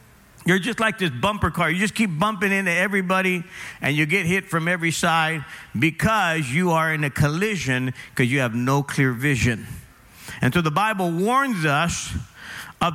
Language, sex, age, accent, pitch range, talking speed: English, male, 50-69, American, 155-200 Hz, 175 wpm